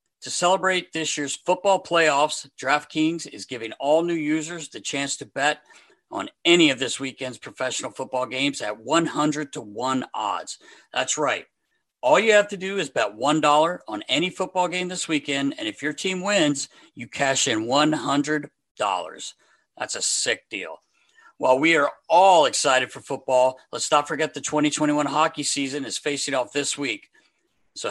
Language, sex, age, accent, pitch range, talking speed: English, male, 50-69, American, 140-170 Hz, 170 wpm